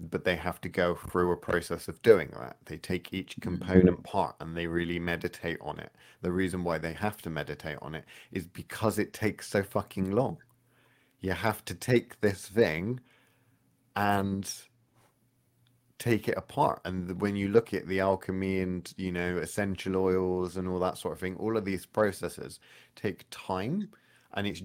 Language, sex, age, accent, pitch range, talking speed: English, male, 30-49, British, 85-100 Hz, 180 wpm